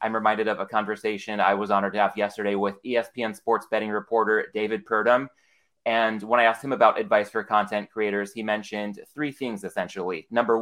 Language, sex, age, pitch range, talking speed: English, male, 20-39, 110-125 Hz, 190 wpm